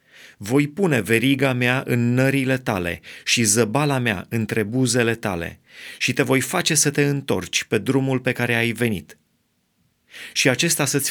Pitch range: 110-135 Hz